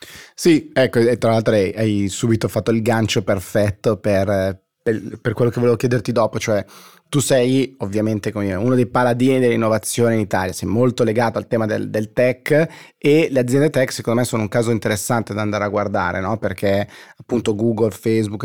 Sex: male